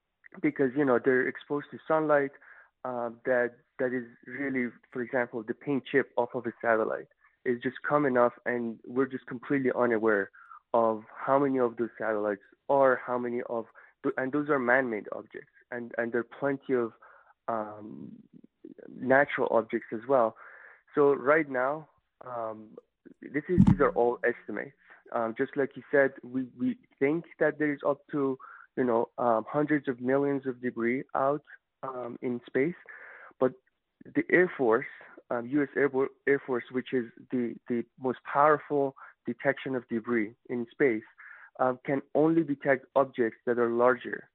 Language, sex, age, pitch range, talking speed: English, male, 20-39, 120-140 Hz, 165 wpm